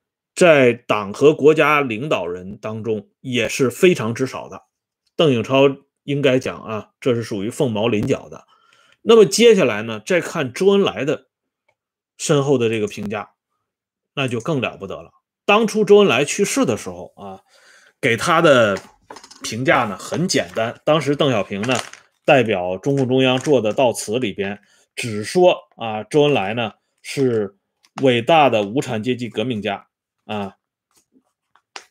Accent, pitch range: Chinese, 110-170 Hz